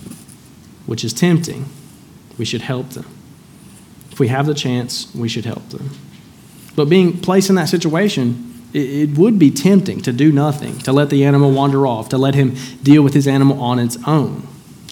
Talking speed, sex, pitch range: 180 wpm, male, 125-155 Hz